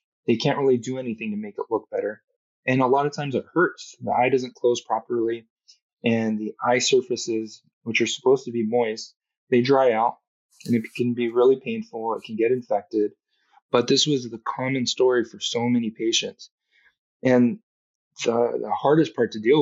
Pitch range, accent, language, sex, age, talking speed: 115-145 Hz, American, English, male, 20-39, 190 wpm